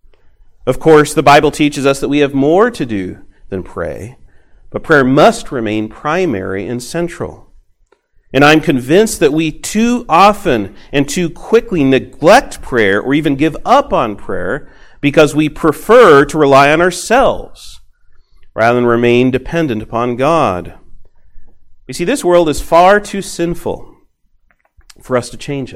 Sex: male